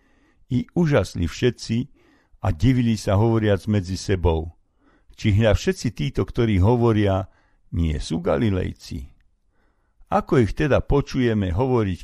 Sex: male